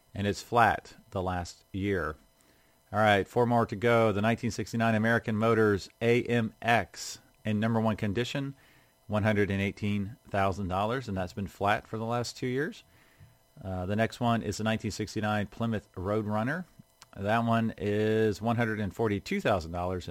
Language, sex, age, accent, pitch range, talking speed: English, male, 40-59, American, 100-120 Hz, 130 wpm